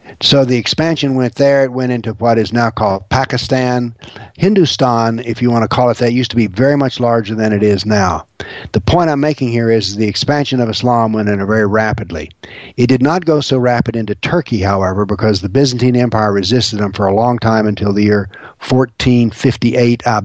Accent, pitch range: American, 110-130 Hz